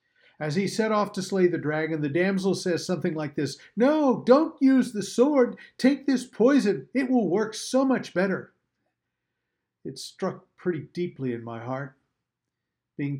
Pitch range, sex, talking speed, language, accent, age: 135-195 Hz, male, 165 wpm, English, American, 50-69